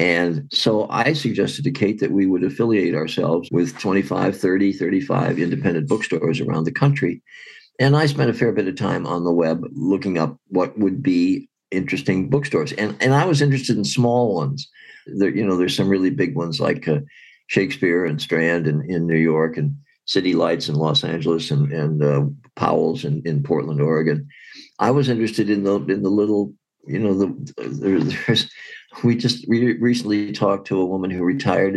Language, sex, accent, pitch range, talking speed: English, male, American, 95-125 Hz, 190 wpm